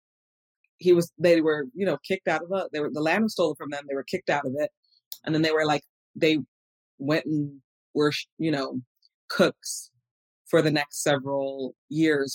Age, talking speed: 30-49, 200 wpm